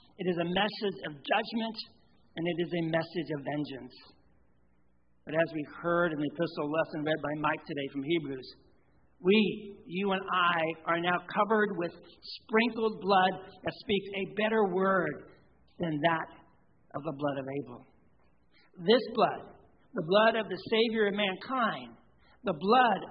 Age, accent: 60-79, American